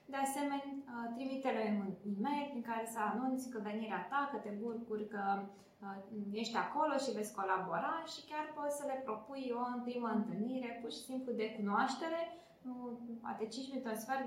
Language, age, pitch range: Romanian, 20-39, 215-265 Hz